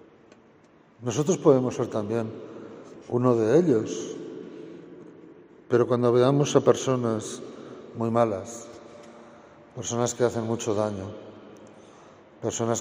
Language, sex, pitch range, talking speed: Spanish, male, 105-125 Hz, 95 wpm